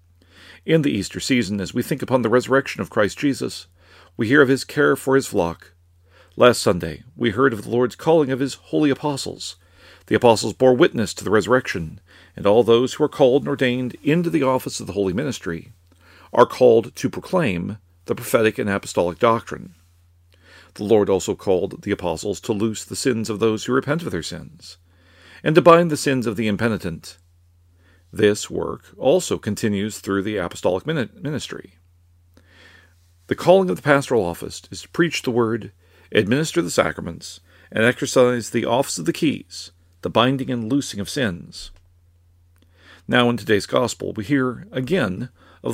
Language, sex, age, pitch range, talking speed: English, male, 40-59, 85-130 Hz, 175 wpm